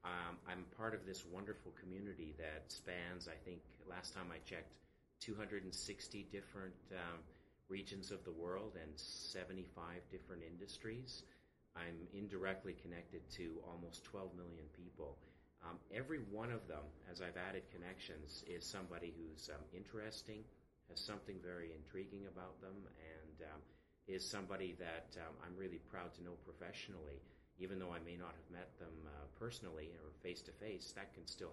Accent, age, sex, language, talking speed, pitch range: American, 40-59, male, English, 160 wpm, 80-95 Hz